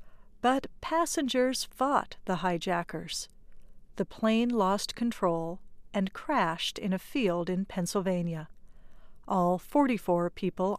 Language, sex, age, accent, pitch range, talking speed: English, female, 50-69, American, 175-225 Hz, 105 wpm